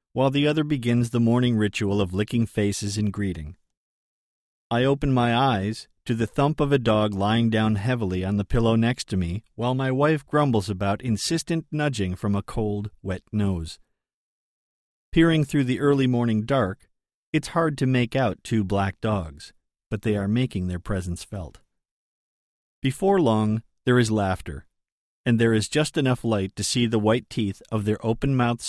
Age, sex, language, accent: 40-59, male, English, American